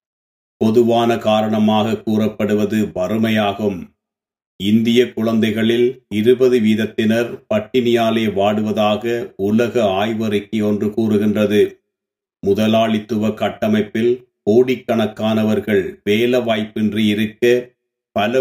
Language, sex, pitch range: Tamil, male, 105-120 Hz